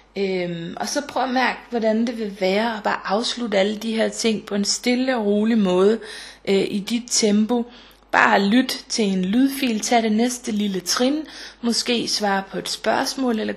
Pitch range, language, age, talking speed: 195-235 Hz, Danish, 30-49, 190 wpm